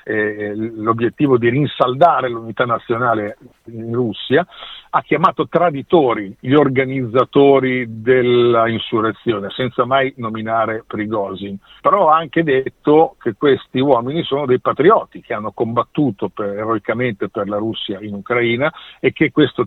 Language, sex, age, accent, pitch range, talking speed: Italian, male, 50-69, native, 110-135 Hz, 130 wpm